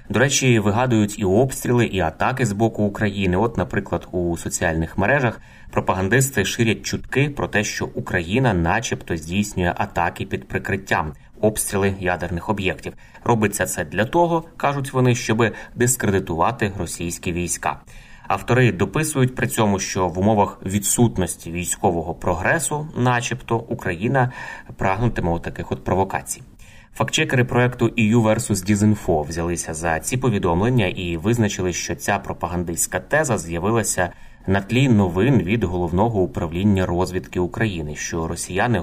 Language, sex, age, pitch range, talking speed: Ukrainian, male, 30-49, 90-115 Hz, 125 wpm